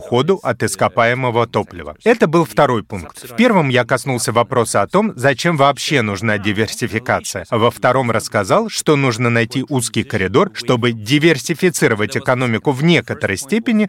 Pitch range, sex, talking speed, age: 120-160 Hz, male, 145 wpm, 30-49